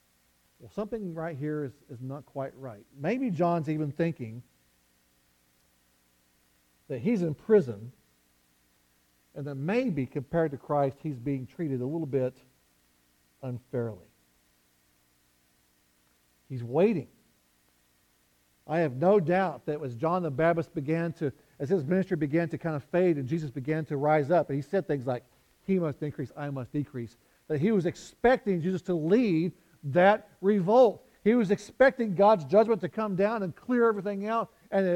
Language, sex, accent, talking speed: English, male, American, 155 wpm